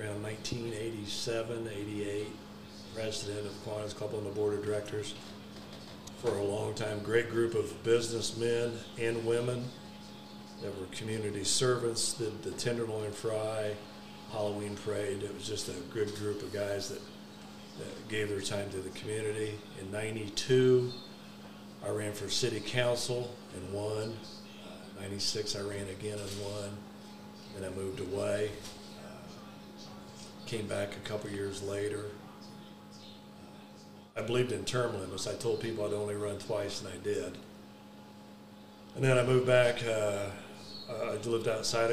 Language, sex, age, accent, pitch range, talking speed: English, male, 40-59, American, 100-110 Hz, 140 wpm